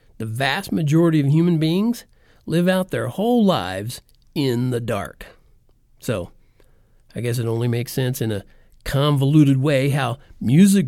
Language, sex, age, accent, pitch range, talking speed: English, male, 50-69, American, 120-165 Hz, 150 wpm